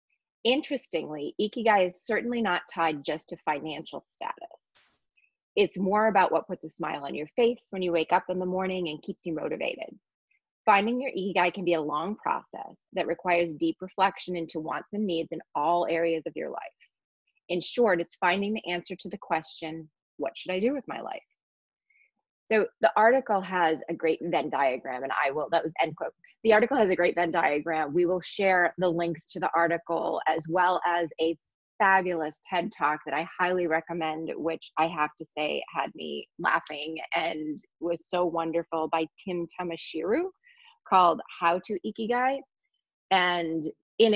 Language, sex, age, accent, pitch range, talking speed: English, female, 30-49, American, 165-195 Hz, 180 wpm